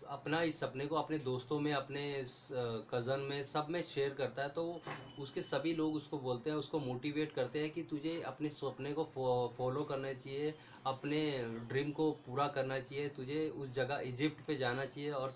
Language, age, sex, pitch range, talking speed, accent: Hindi, 20-39, male, 135-160 Hz, 190 wpm, native